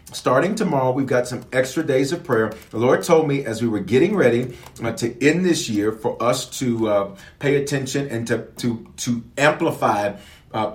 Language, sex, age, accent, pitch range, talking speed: English, male, 40-59, American, 110-155 Hz, 190 wpm